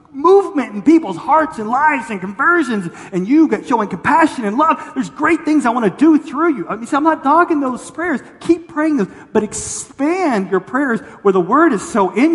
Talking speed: 230 wpm